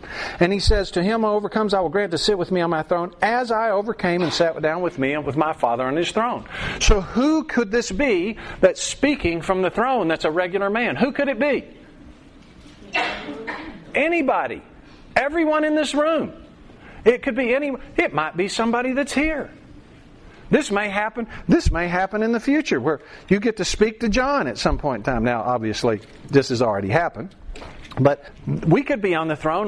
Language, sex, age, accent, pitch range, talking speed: English, male, 50-69, American, 175-245 Hz, 200 wpm